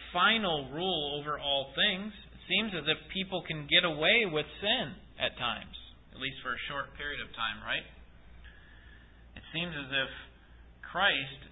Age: 30-49